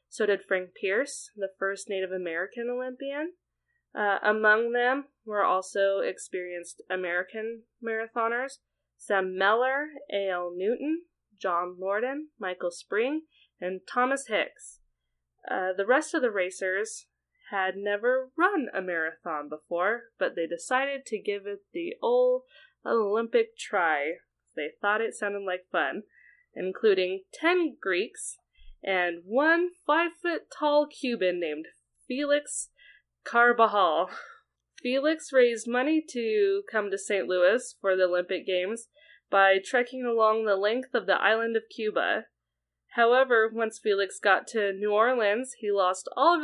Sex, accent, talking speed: female, American, 130 wpm